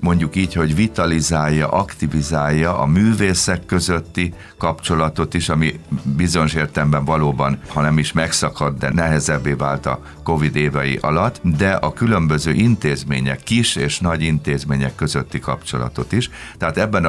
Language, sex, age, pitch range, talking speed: Hungarian, male, 50-69, 70-85 Hz, 130 wpm